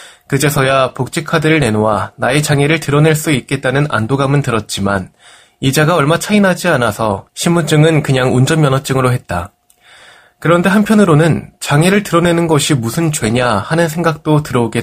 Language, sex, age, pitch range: Korean, male, 20-39, 120-160 Hz